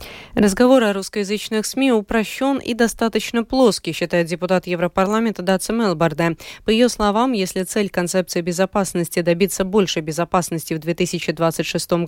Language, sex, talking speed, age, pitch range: Russian, female, 125 wpm, 20-39, 175-225 Hz